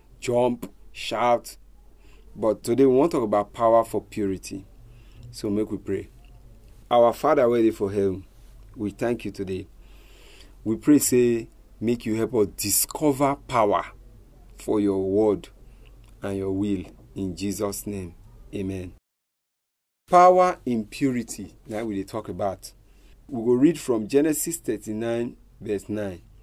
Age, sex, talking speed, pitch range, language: 40-59, male, 135 wpm, 100-125 Hz, English